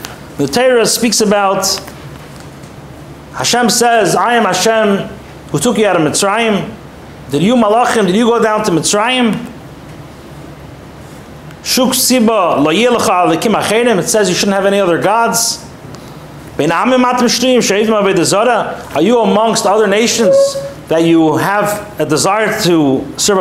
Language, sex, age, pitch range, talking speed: English, male, 40-59, 190-240 Hz, 115 wpm